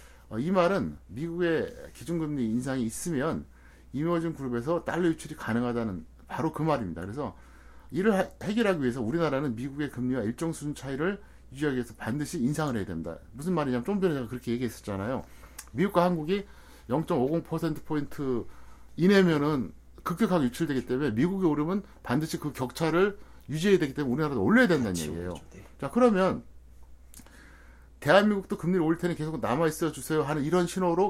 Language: Korean